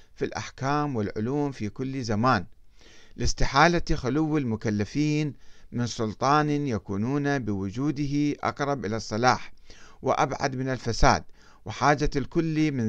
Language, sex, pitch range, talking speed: Arabic, male, 110-150 Hz, 100 wpm